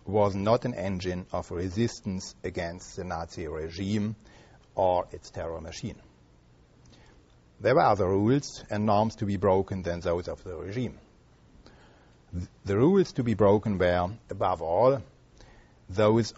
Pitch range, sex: 95-120 Hz, male